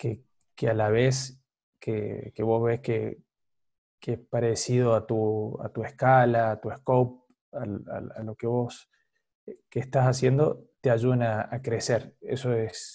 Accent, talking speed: Argentinian, 160 wpm